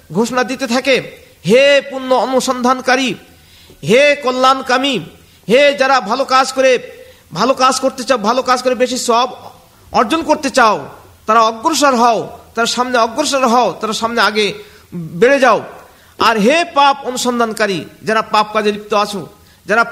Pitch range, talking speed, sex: 220-265 Hz, 80 wpm, male